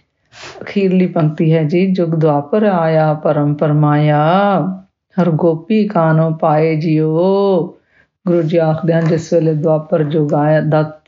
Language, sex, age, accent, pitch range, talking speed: English, female, 50-69, Indian, 155-180 Hz, 120 wpm